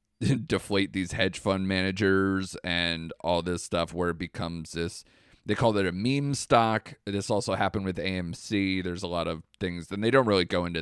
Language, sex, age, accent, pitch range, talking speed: English, male, 30-49, American, 95-125 Hz, 195 wpm